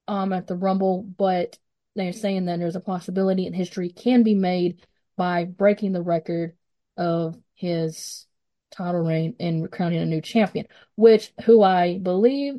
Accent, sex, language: American, female, English